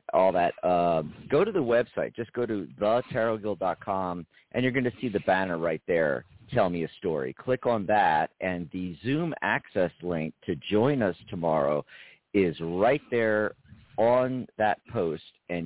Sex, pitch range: male, 90-120 Hz